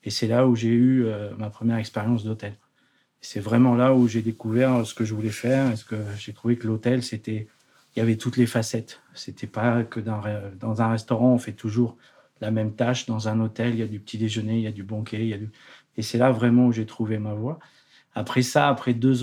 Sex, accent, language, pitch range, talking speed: male, French, French, 110-125 Hz, 230 wpm